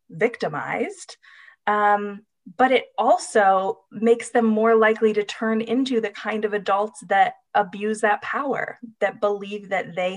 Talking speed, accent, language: 140 wpm, American, English